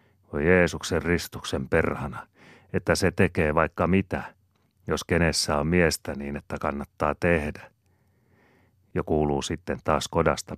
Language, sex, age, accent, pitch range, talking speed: Finnish, male, 40-59, native, 70-90 Hz, 125 wpm